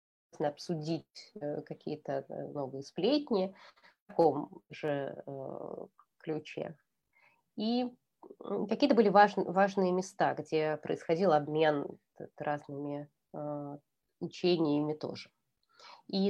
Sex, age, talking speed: female, 20-39, 75 wpm